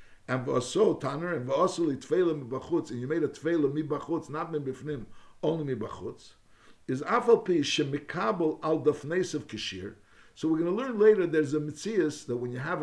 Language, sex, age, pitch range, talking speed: English, male, 60-79, 120-165 Hz, 105 wpm